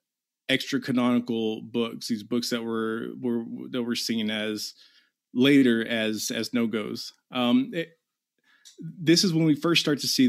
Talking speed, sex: 145 wpm, male